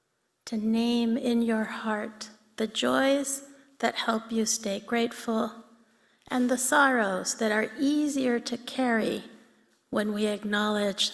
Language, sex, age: English, female, 30-49